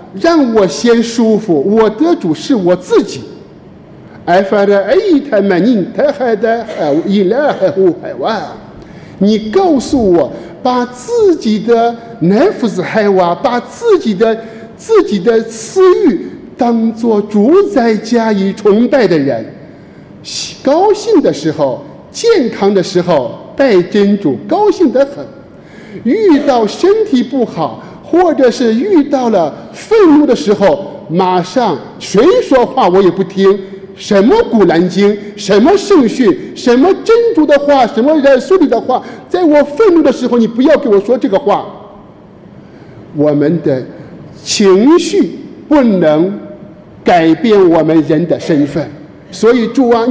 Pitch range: 195-295 Hz